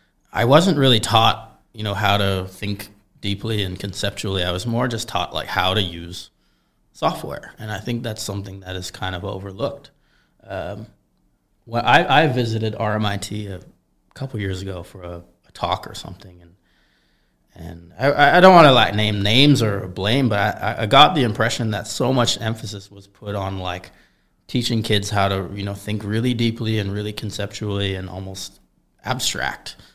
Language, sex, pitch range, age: Vietnamese, male, 95-120 Hz, 30-49